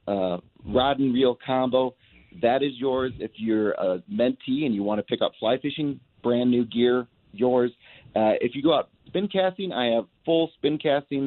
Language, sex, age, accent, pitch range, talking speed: English, male, 30-49, American, 110-140 Hz, 190 wpm